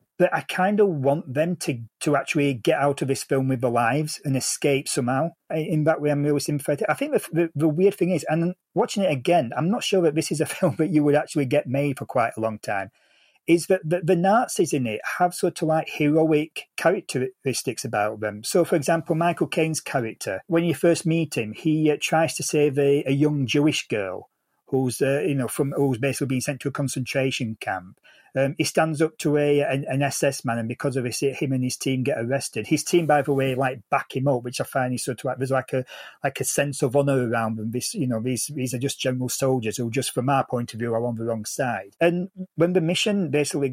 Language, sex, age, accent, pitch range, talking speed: English, male, 40-59, British, 130-155 Hz, 245 wpm